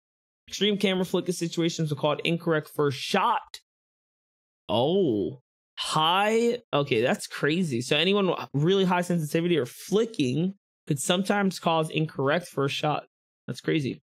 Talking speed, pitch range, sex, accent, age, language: 130 wpm, 130-170 Hz, male, American, 20-39, English